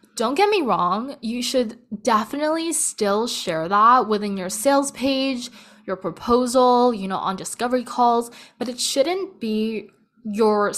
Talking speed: 145 wpm